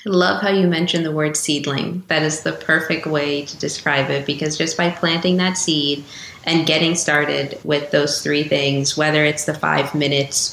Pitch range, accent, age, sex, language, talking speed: 140-155 Hz, American, 20-39, female, English, 195 wpm